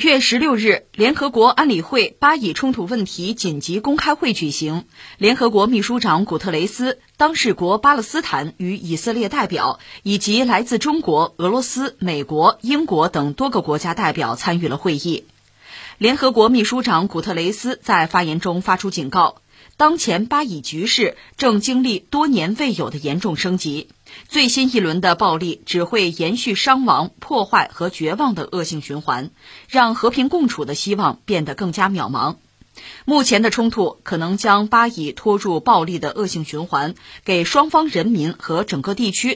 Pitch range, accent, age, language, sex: 165-250 Hz, native, 20-39, Chinese, female